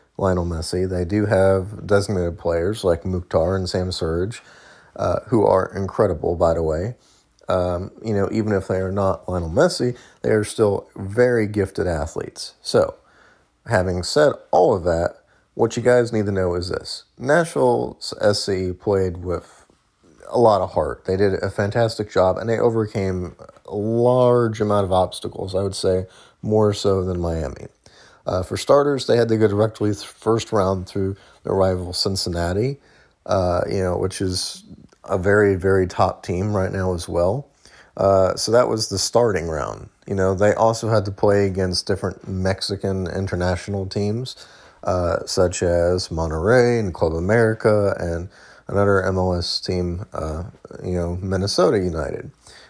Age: 30-49